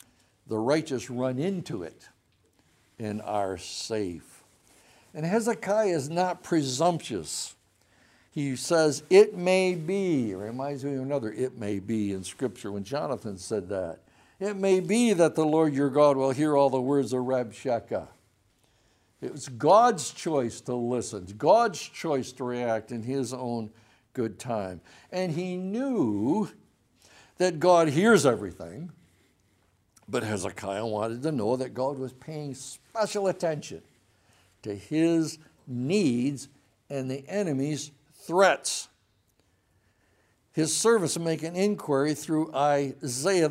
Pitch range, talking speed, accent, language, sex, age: 120-165 Hz, 130 wpm, American, English, male, 60-79